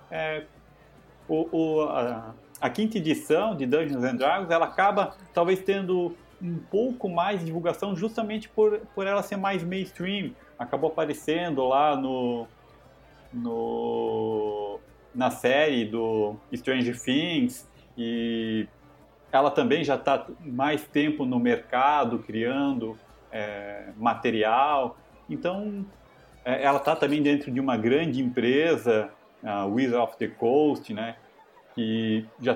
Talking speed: 125 wpm